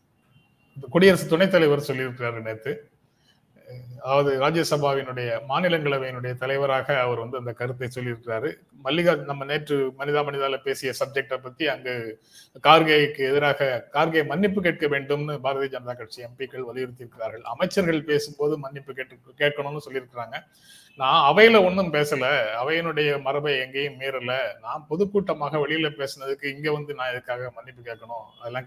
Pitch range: 130-160 Hz